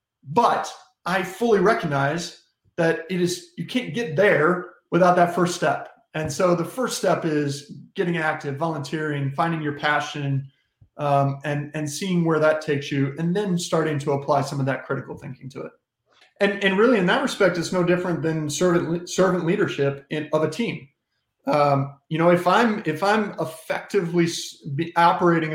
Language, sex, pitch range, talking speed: English, male, 150-180 Hz, 170 wpm